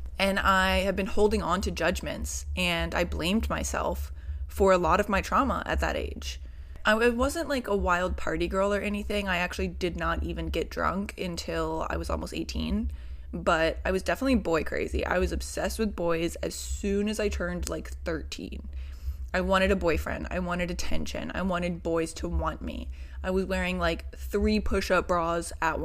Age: 20-39